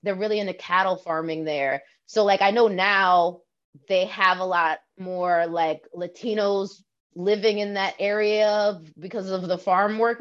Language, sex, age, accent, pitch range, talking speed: English, female, 20-39, American, 165-205 Hz, 160 wpm